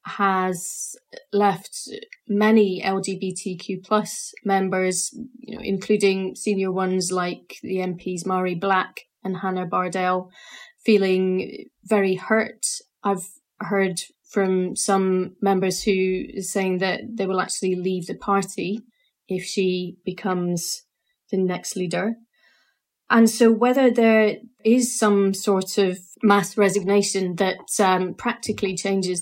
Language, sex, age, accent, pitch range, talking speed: English, female, 30-49, British, 185-215 Hz, 115 wpm